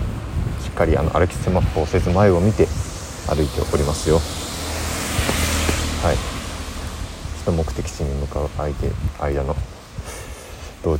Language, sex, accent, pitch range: Japanese, male, native, 75-90 Hz